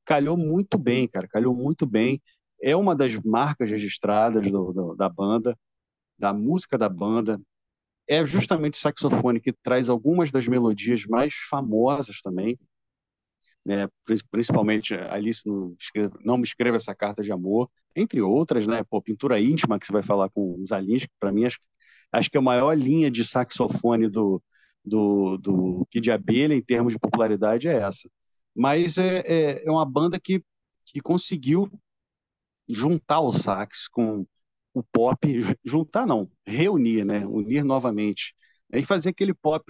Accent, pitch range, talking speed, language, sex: Brazilian, 105-150 Hz, 155 wpm, Portuguese, male